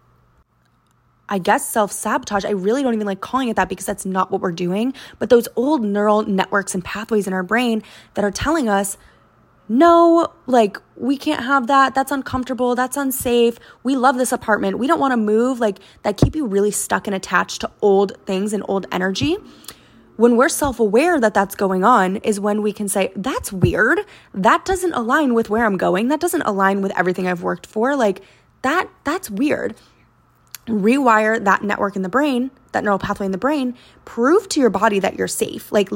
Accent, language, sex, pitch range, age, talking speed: American, English, female, 200-255 Hz, 20-39, 200 wpm